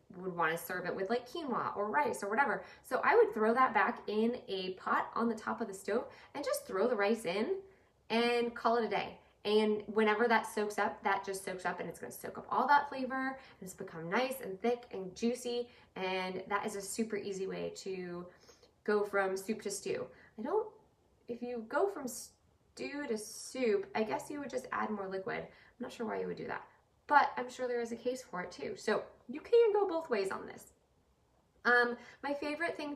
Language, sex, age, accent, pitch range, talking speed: English, female, 20-39, American, 195-240 Hz, 225 wpm